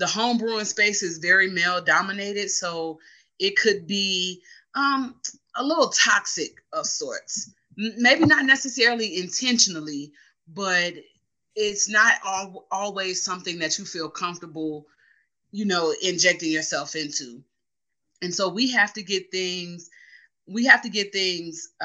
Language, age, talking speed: English, 30-49, 130 wpm